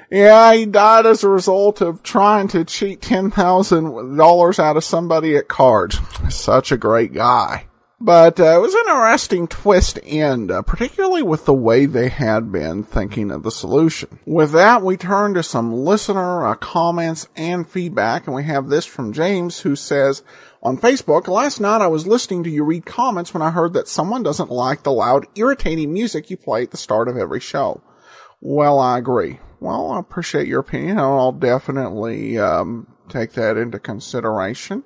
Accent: American